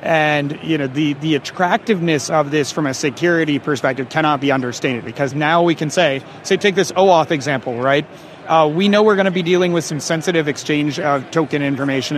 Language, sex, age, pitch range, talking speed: English, male, 30-49, 145-185 Hz, 200 wpm